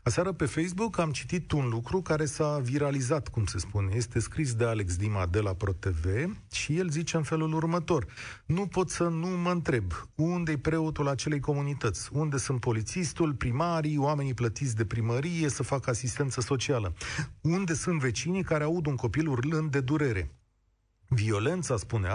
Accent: native